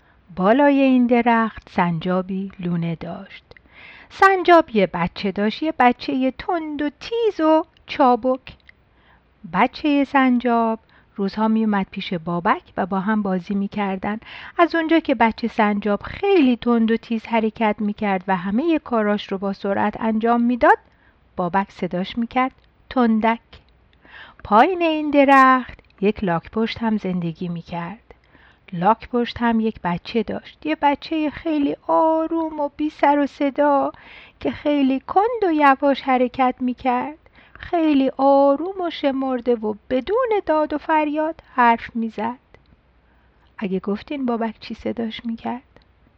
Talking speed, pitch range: 135 wpm, 205-290 Hz